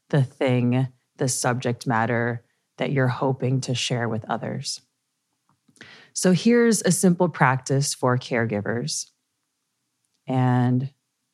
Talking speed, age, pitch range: 105 wpm, 30-49, 130-165 Hz